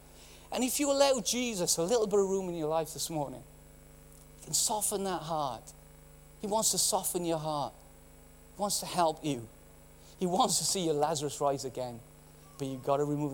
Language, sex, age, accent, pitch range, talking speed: English, male, 40-59, British, 135-210 Hz, 200 wpm